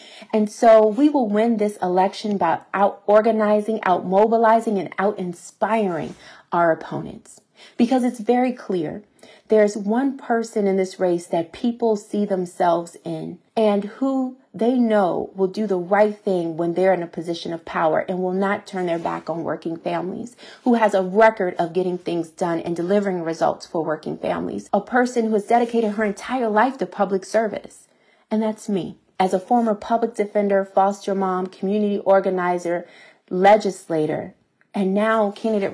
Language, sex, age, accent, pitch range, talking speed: English, female, 30-49, American, 180-220 Hz, 160 wpm